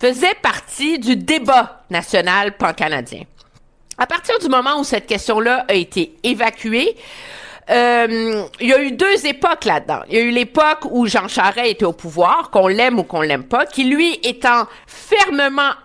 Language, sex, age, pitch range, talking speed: French, female, 50-69, 200-280 Hz, 170 wpm